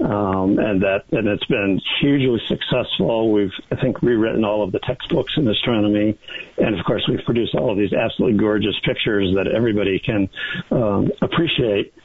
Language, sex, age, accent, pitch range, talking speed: English, male, 50-69, American, 100-115 Hz, 170 wpm